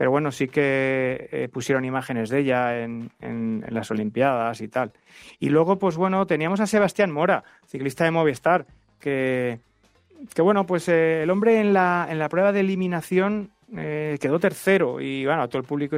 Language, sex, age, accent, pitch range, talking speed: Spanish, male, 30-49, Spanish, 130-170 Hz, 185 wpm